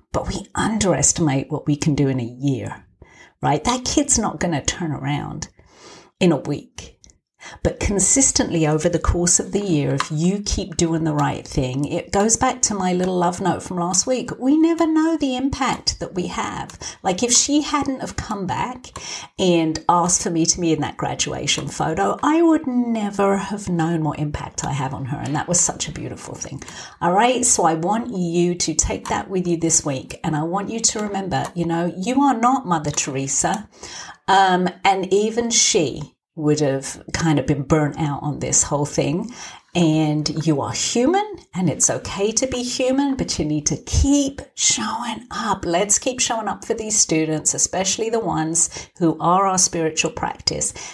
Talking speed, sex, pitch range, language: 190 wpm, female, 155-215 Hz, English